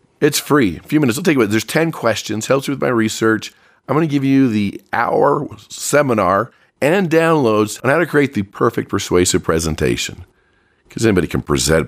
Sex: male